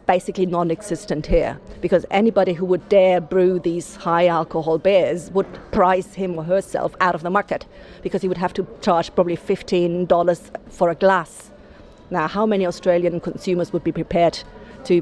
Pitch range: 170-190 Hz